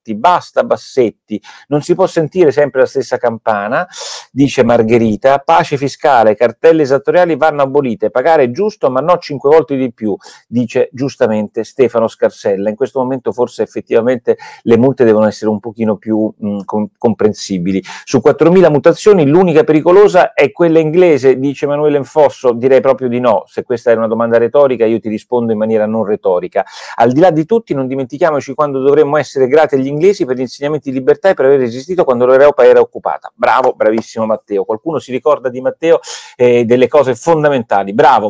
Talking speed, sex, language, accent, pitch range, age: 175 wpm, male, Italian, native, 115-155 Hz, 40-59